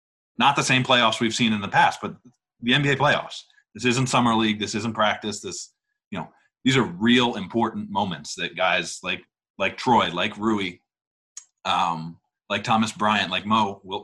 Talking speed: 180 wpm